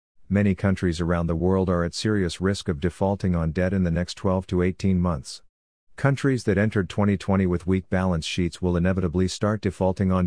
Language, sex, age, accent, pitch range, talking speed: English, male, 50-69, American, 90-105 Hz, 195 wpm